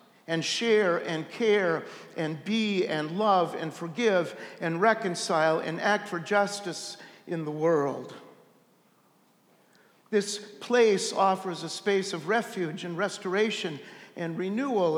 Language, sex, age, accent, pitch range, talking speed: English, male, 50-69, American, 165-210 Hz, 120 wpm